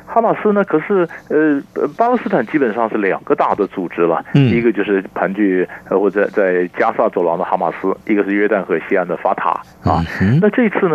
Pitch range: 105-170 Hz